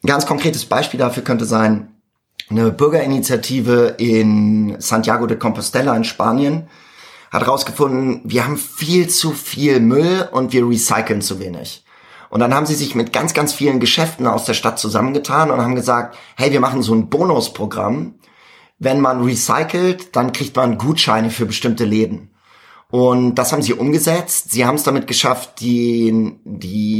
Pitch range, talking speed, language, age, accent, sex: 115-145 Hz, 160 wpm, German, 30-49, German, male